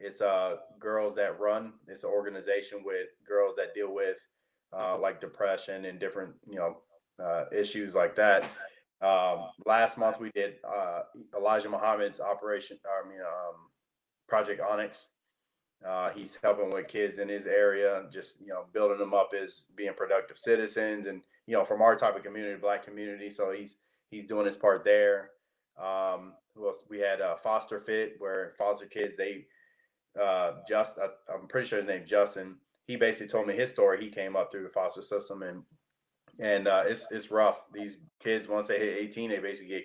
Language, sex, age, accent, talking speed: English, male, 20-39, American, 185 wpm